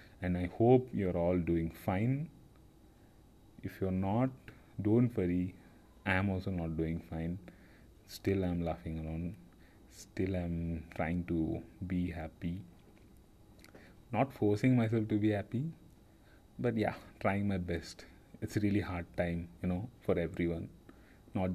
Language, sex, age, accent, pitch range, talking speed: English, male, 30-49, Indian, 85-100 Hz, 135 wpm